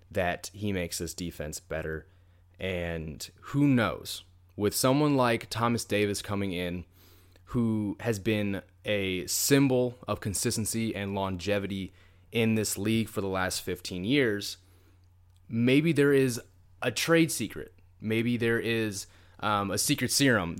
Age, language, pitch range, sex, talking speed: 20-39, English, 90-115 Hz, male, 135 wpm